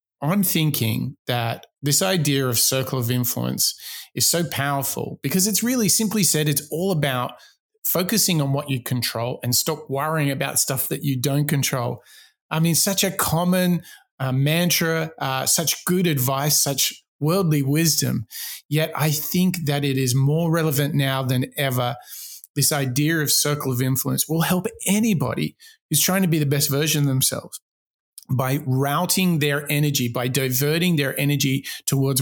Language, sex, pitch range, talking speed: English, male, 130-160 Hz, 160 wpm